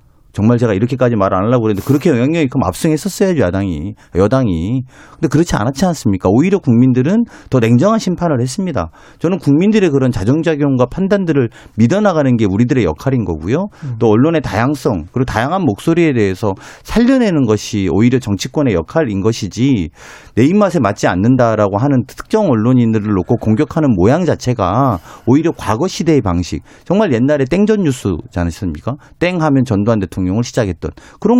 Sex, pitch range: male, 110-160 Hz